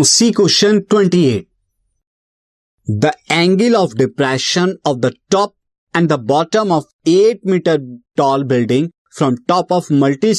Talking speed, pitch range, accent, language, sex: 120 wpm, 130-175 Hz, native, Hindi, male